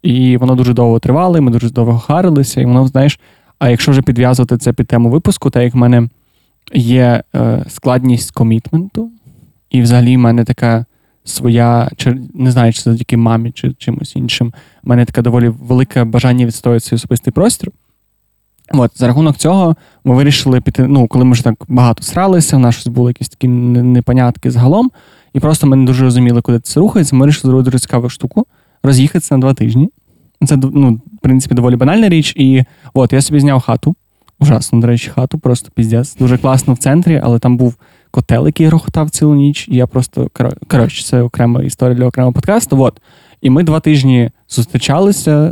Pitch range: 120-145 Hz